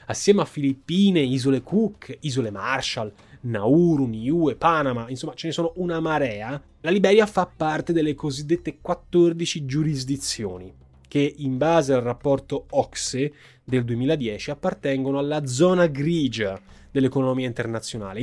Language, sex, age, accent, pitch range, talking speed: Italian, male, 20-39, native, 125-155 Hz, 125 wpm